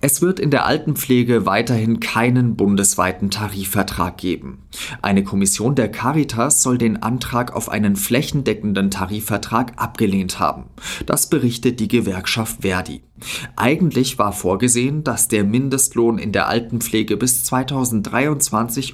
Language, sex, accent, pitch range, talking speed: German, male, German, 100-125 Hz, 125 wpm